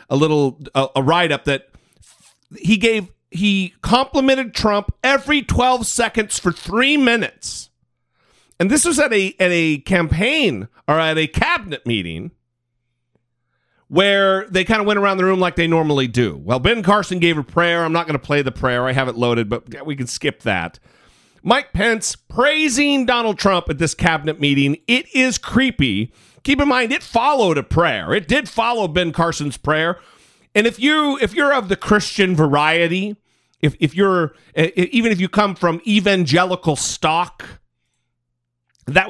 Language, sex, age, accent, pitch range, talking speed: English, male, 40-59, American, 145-220 Hz, 165 wpm